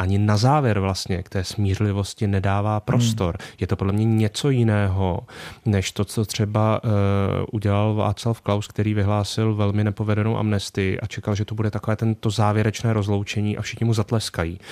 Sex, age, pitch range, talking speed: male, 30-49, 100-110 Hz, 165 wpm